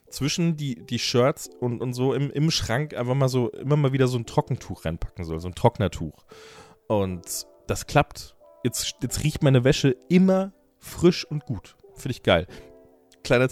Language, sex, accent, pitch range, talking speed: German, male, German, 95-130 Hz, 180 wpm